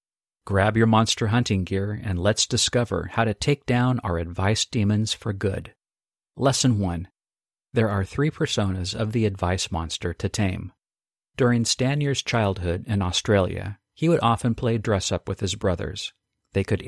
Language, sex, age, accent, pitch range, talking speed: English, male, 50-69, American, 95-115 Hz, 155 wpm